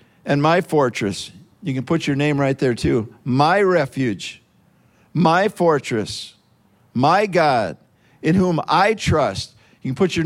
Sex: male